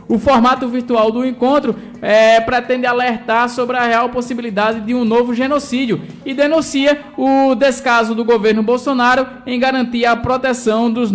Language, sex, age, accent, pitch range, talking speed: Portuguese, male, 20-39, Brazilian, 210-245 Hz, 150 wpm